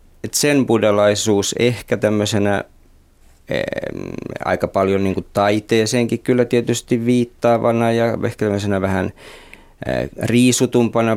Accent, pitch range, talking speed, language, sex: native, 95-115 Hz, 100 wpm, Finnish, male